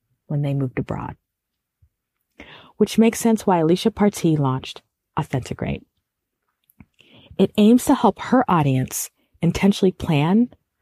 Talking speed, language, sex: 110 wpm, English, female